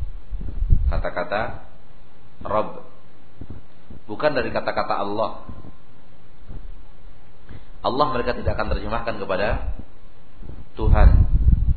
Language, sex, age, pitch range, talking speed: Malay, male, 40-59, 85-110 Hz, 65 wpm